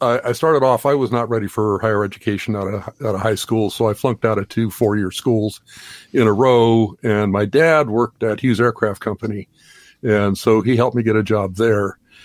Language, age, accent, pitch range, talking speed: English, 50-69, American, 100-120 Hz, 220 wpm